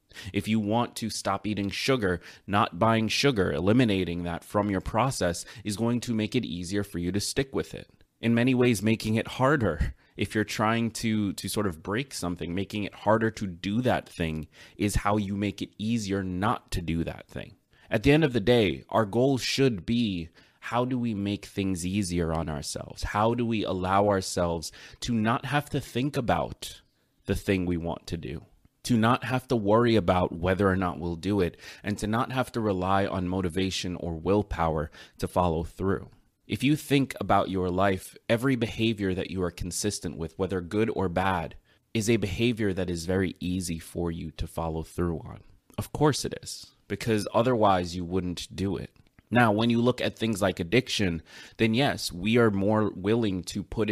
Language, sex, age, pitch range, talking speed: English, male, 20-39, 90-115 Hz, 195 wpm